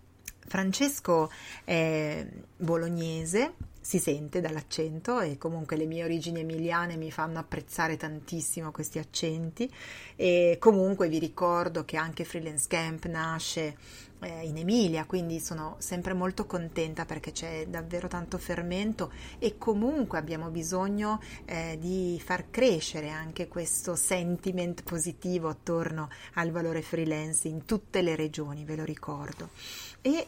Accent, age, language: native, 30-49, Italian